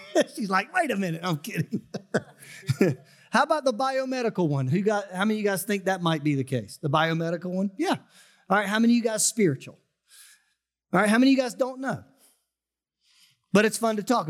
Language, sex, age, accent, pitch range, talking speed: English, male, 40-59, American, 165-225 Hz, 215 wpm